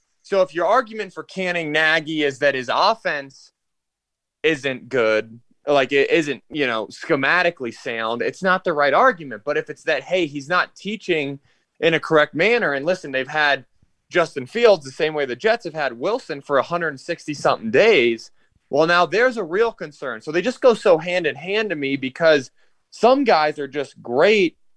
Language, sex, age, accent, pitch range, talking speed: English, male, 20-39, American, 135-185 Hz, 180 wpm